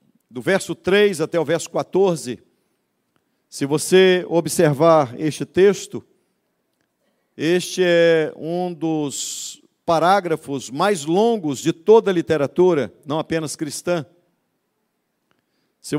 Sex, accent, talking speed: male, Brazilian, 100 wpm